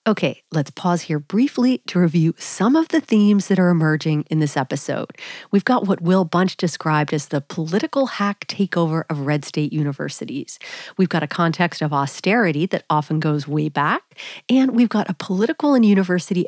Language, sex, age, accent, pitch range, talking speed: English, female, 40-59, American, 160-220 Hz, 180 wpm